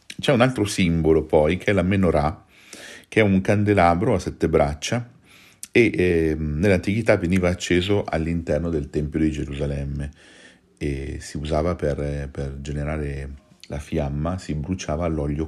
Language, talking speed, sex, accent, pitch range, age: Italian, 145 wpm, male, native, 75-90 Hz, 40-59